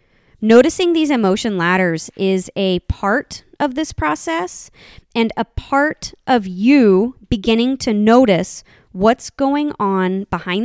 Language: English